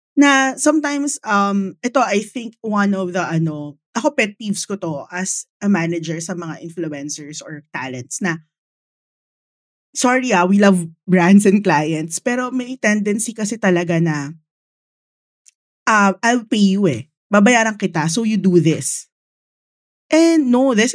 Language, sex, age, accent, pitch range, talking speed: English, female, 20-39, Filipino, 170-250 Hz, 145 wpm